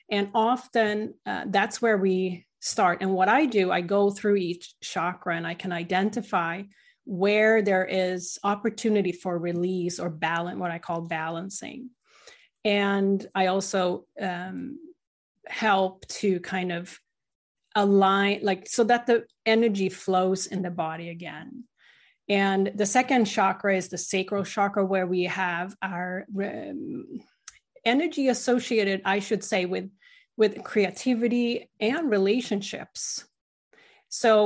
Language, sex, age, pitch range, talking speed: English, female, 30-49, 185-235 Hz, 130 wpm